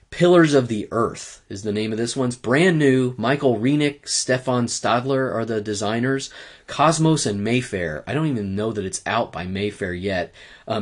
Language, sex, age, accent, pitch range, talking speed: English, male, 30-49, American, 105-130 Hz, 190 wpm